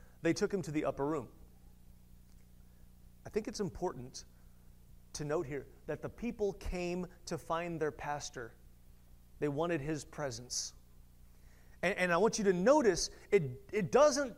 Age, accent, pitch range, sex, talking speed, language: 30-49, American, 130-210 Hz, male, 150 wpm, English